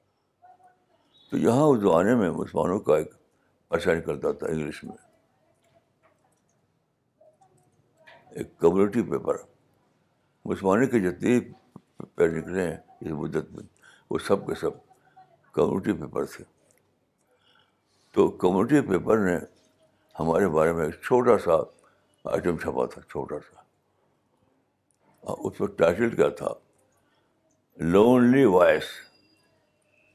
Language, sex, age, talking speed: Urdu, male, 60-79, 105 wpm